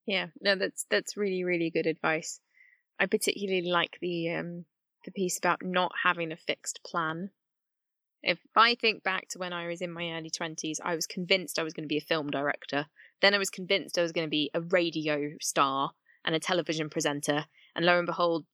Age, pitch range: 20-39, 165-200 Hz